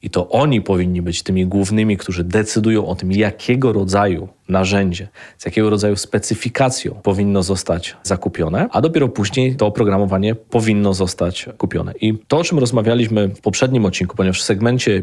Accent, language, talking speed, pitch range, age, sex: native, Polish, 160 wpm, 95-110 Hz, 30-49, male